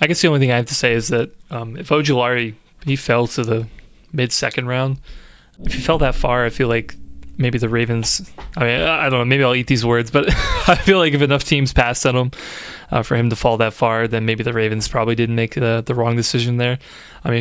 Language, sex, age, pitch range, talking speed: English, male, 20-39, 115-140 Hz, 250 wpm